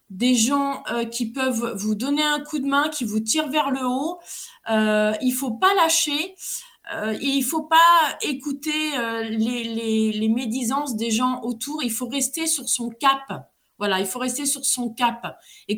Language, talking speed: French, 200 wpm